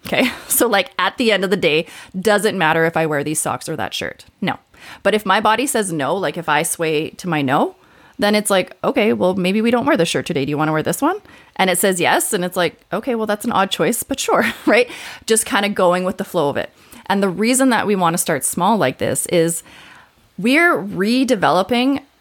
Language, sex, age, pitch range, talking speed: English, female, 30-49, 175-225 Hz, 245 wpm